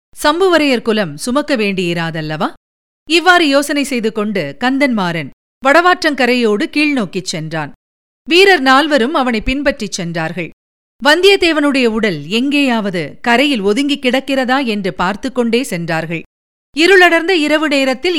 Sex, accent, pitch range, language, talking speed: female, native, 205-295 Hz, Tamil, 100 wpm